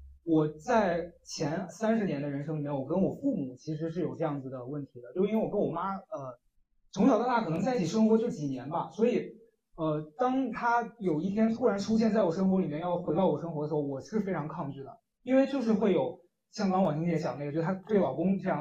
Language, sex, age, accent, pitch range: Chinese, male, 20-39, native, 155-220 Hz